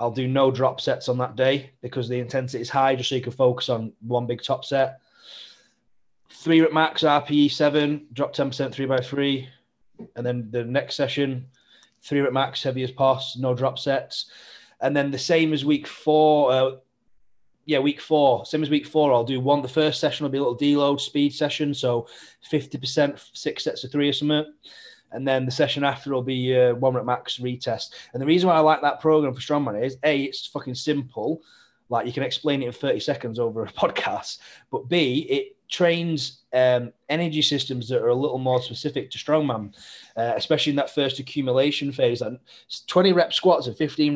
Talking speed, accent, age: 200 wpm, British, 20-39